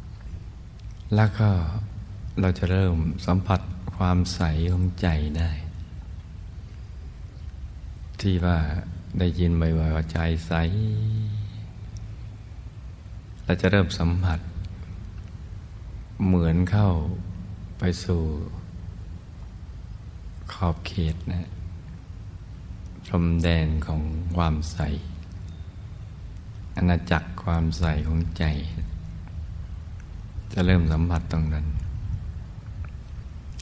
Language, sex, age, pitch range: Thai, male, 60-79, 85-95 Hz